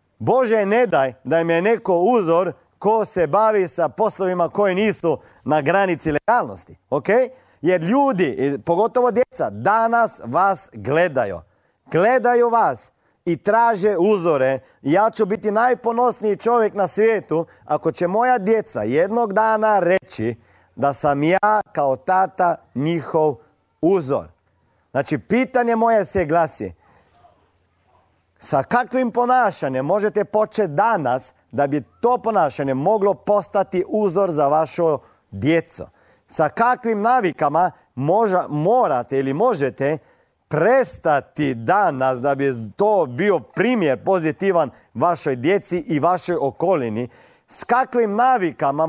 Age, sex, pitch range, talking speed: 40-59, male, 150-225 Hz, 120 wpm